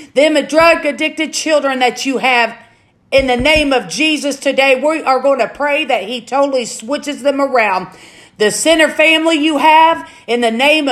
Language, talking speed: English, 175 wpm